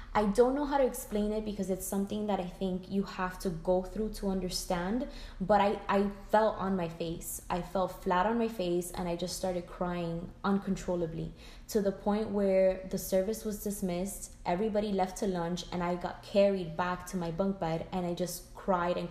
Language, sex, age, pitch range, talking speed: English, female, 20-39, 175-205 Hz, 205 wpm